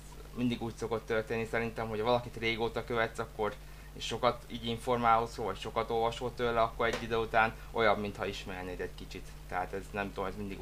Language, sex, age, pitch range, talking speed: Hungarian, male, 20-39, 100-125 Hz, 190 wpm